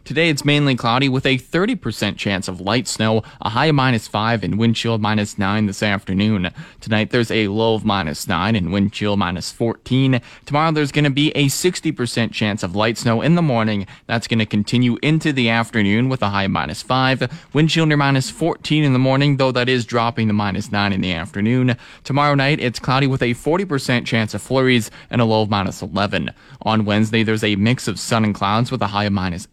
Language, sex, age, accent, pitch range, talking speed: English, male, 20-39, American, 105-130 Hz, 215 wpm